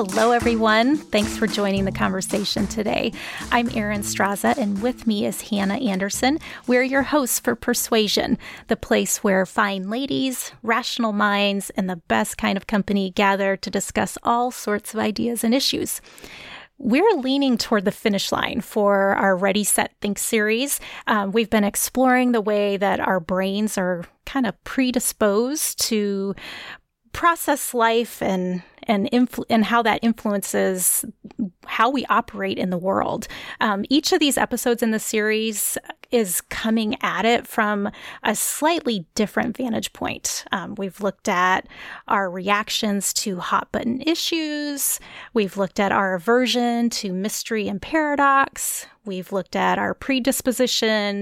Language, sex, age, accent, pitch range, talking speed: English, female, 30-49, American, 200-245 Hz, 145 wpm